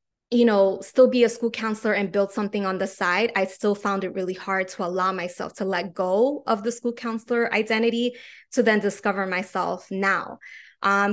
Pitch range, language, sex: 195-230 Hz, English, female